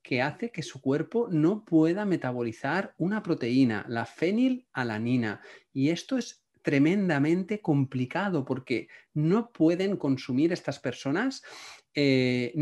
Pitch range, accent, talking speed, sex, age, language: 130-175 Hz, Spanish, 115 wpm, male, 40-59, Spanish